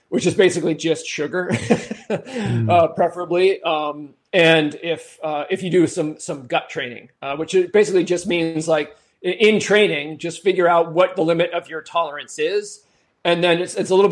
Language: English